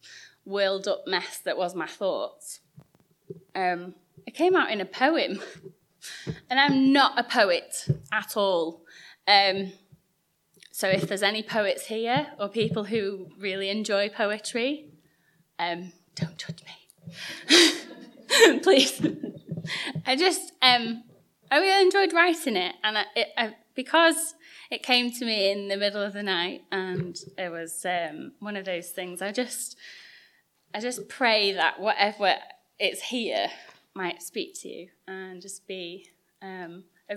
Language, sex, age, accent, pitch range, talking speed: English, female, 20-39, British, 180-260 Hz, 135 wpm